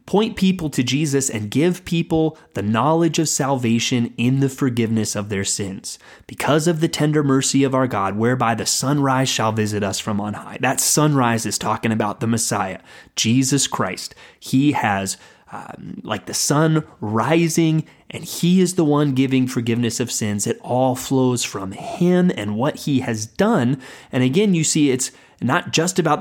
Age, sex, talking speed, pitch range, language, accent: 30-49, male, 175 wpm, 115-155 Hz, English, American